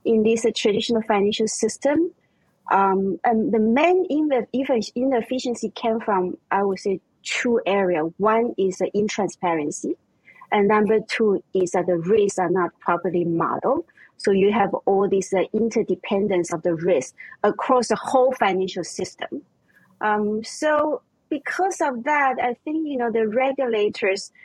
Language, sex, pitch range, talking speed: English, female, 185-245 Hz, 145 wpm